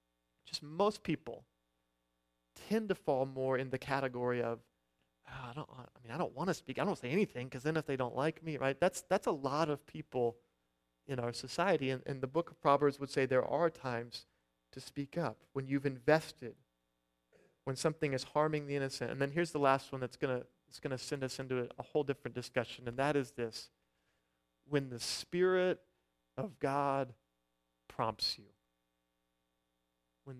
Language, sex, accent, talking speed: English, male, American, 180 wpm